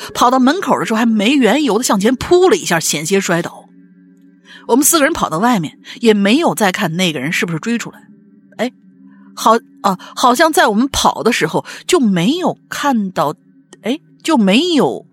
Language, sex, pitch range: Chinese, female, 170-265 Hz